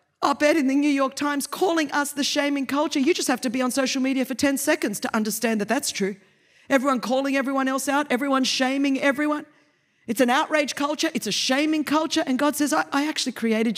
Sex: female